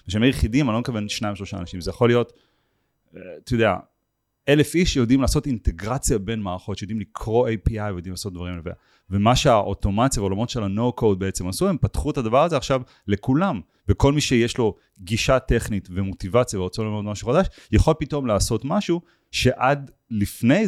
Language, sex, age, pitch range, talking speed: Hebrew, male, 30-49, 100-130 Hz, 170 wpm